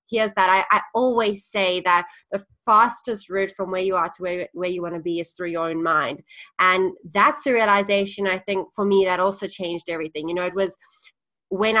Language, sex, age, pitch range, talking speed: English, female, 20-39, 175-210 Hz, 215 wpm